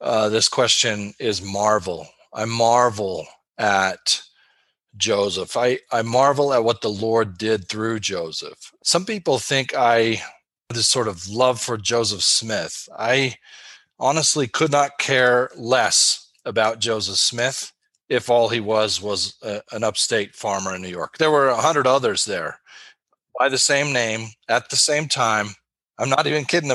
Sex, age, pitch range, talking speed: male, 40-59, 110-140 Hz, 155 wpm